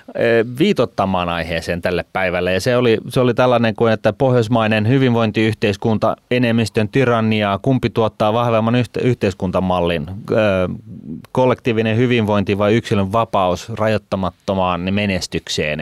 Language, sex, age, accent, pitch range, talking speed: Finnish, male, 30-49, native, 95-115 Hz, 100 wpm